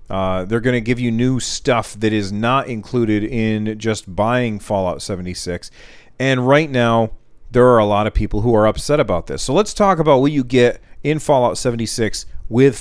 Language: English